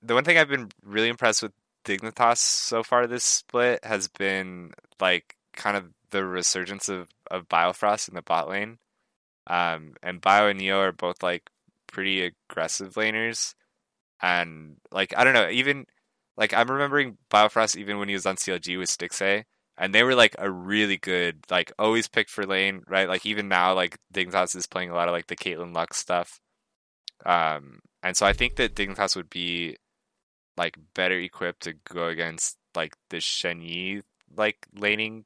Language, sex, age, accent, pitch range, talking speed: English, male, 20-39, American, 90-110 Hz, 180 wpm